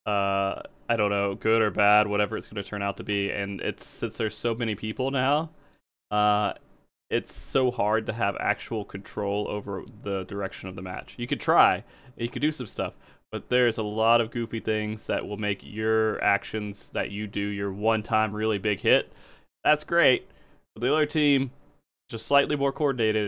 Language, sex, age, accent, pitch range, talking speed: English, male, 20-39, American, 100-120 Hz, 195 wpm